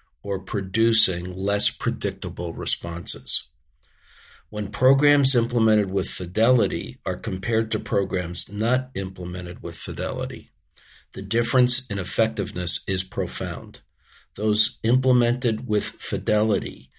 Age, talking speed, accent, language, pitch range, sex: 50-69, 100 wpm, American, English, 95-115 Hz, male